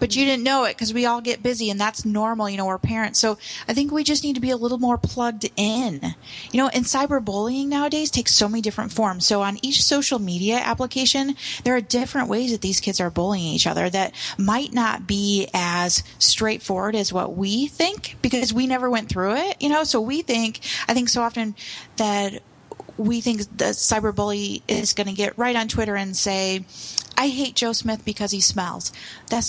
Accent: American